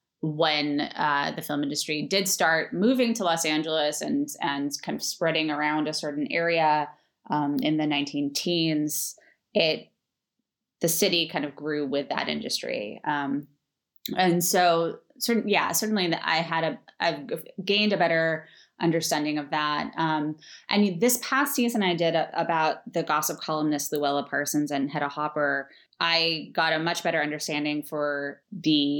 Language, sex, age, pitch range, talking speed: English, female, 20-39, 150-175 Hz, 155 wpm